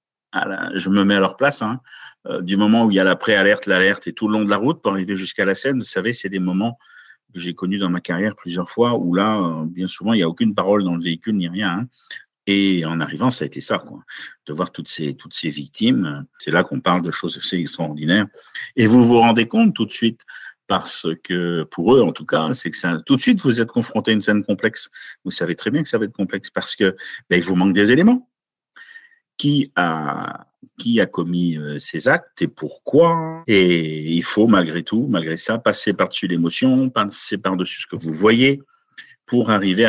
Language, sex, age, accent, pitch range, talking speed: French, male, 50-69, French, 85-115 Hz, 230 wpm